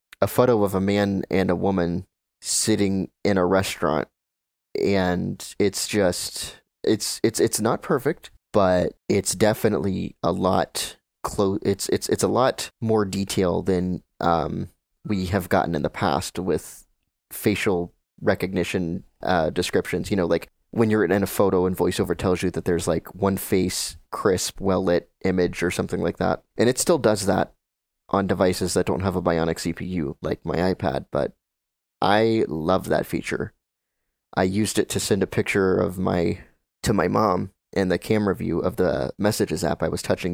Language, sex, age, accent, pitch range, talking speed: English, male, 30-49, American, 85-100 Hz, 170 wpm